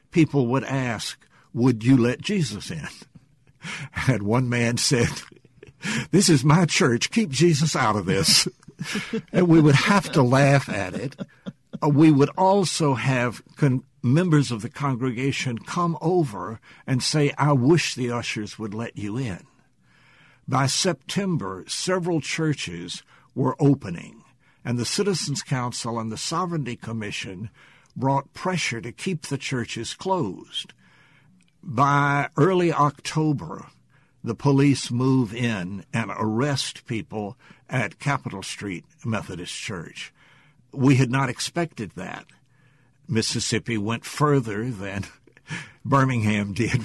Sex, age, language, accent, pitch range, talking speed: male, 60-79, English, American, 115-155 Hz, 125 wpm